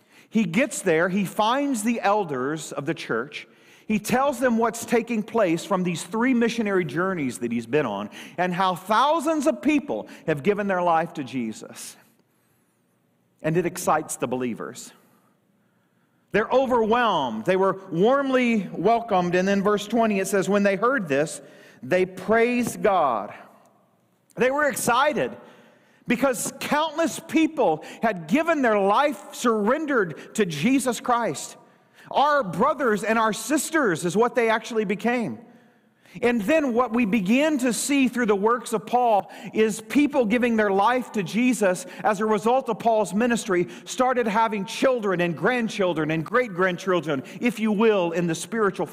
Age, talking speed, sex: 40-59, 150 wpm, male